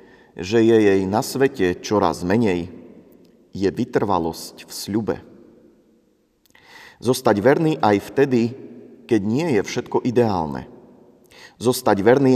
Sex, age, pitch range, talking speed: male, 40-59, 95-125 Hz, 105 wpm